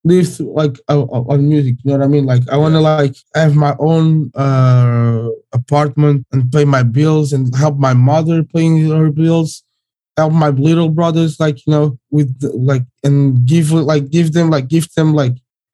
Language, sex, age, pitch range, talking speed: English, male, 20-39, 125-150 Hz, 185 wpm